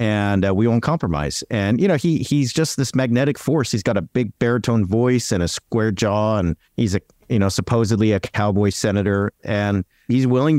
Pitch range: 105-135 Hz